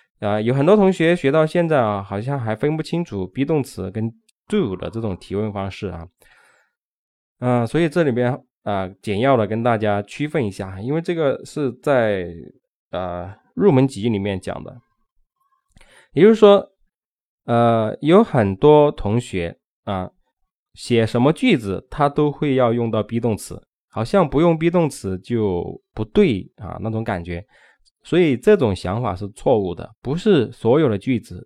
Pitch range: 100-155 Hz